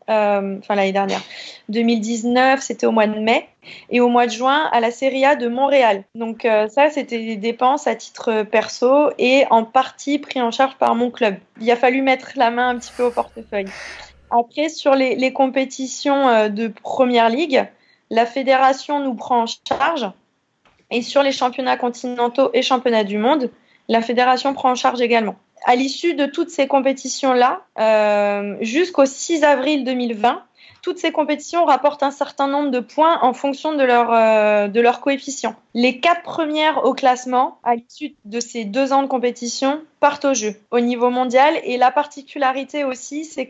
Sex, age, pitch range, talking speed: female, 20-39, 235-280 Hz, 180 wpm